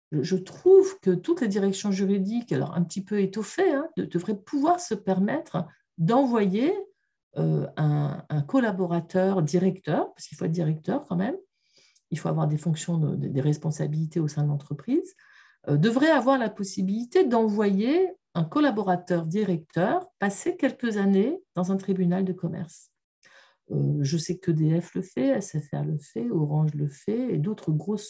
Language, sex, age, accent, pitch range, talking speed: French, female, 50-69, French, 165-230 Hz, 150 wpm